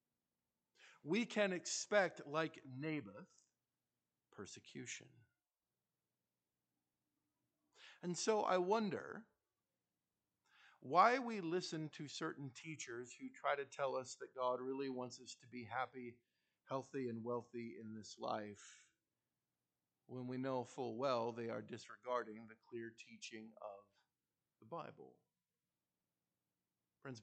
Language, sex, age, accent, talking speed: English, male, 50-69, American, 110 wpm